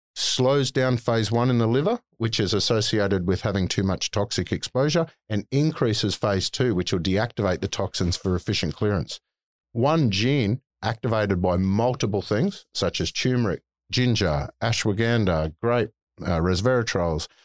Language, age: English, 50-69